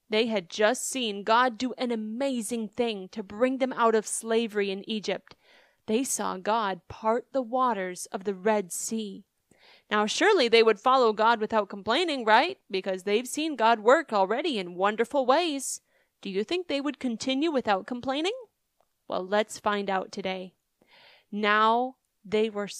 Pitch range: 215-275 Hz